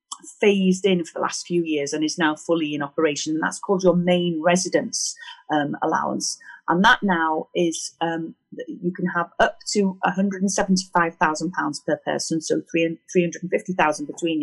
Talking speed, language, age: 200 wpm, English, 30-49